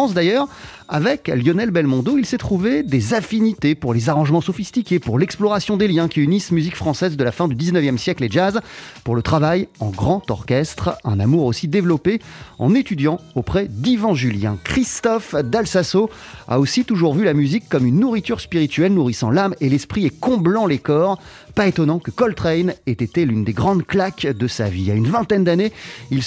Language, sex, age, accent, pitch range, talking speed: French, male, 30-49, French, 125-190 Hz, 185 wpm